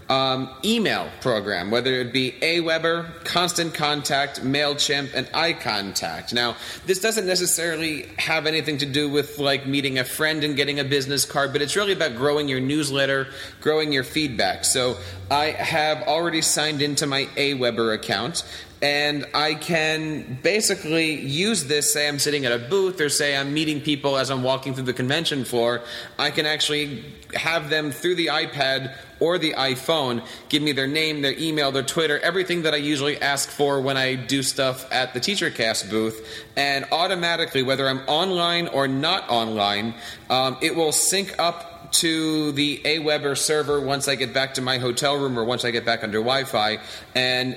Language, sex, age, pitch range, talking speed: English, male, 30-49, 130-155 Hz, 175 wpm